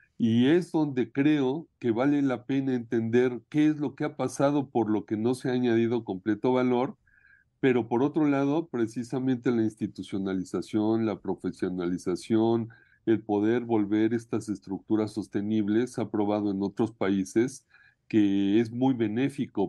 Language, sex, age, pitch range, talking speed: Spanish, male, 50-69, 100-120 Hz, 145 wpm